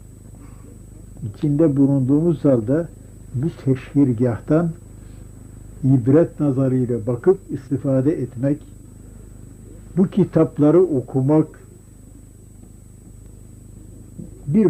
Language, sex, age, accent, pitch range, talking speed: Turkish, male, 60-79, native, 110-155 Hz, 55 wpm